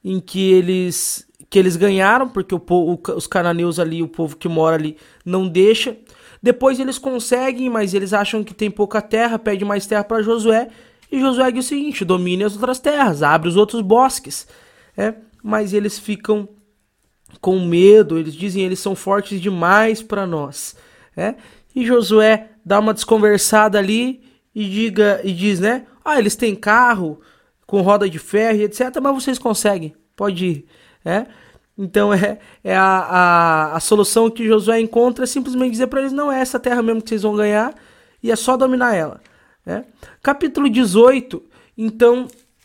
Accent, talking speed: Brazilian, 165 wpm